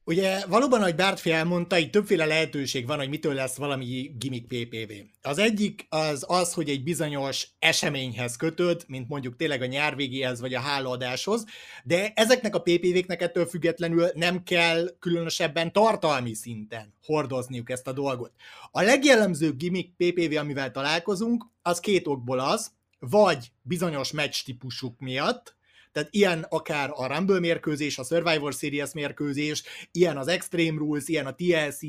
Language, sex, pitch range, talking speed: Hungarian, male, 140-180 Hz, 150 wpm